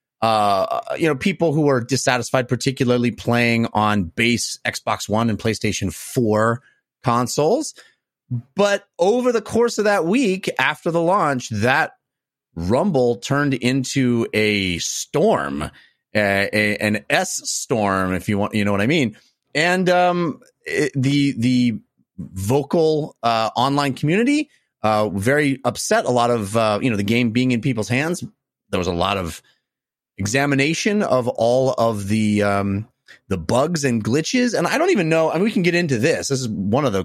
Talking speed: 165 wpm